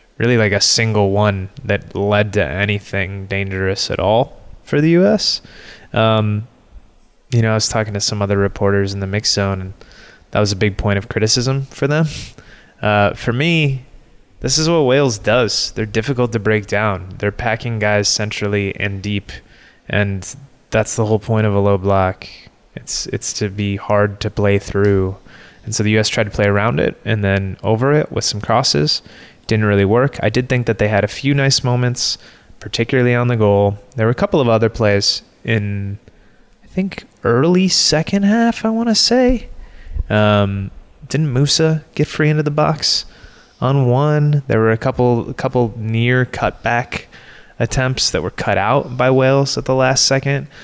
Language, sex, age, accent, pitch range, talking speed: English, male, 20-39, American, 100-135 Hz, 180 wpm